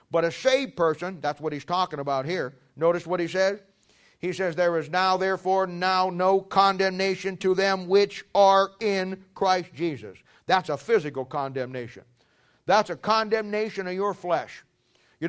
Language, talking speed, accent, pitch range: English, 160 wpm, American, 165-210 Hz